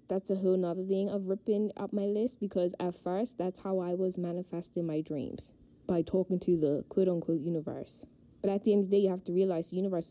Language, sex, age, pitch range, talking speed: English, female, 10-29, 165-220 Hz, 230 wpm